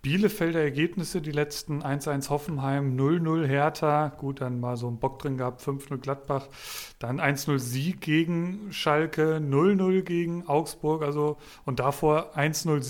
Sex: male